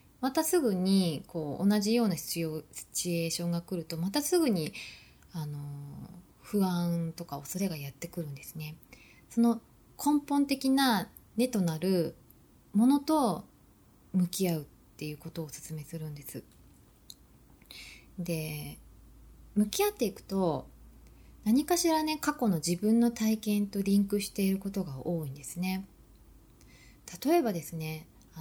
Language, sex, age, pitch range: Japanese, female, 20-39, 155-215 Hz